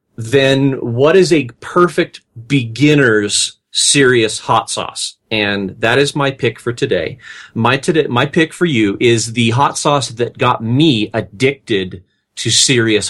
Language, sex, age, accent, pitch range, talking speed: English, male, 40-59, American, 120-170 Hz, 145 wpm